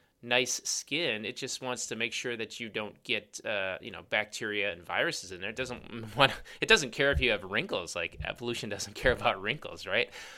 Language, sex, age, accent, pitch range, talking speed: English, male, 30-49, American, 110-160 Hz, 215 wpm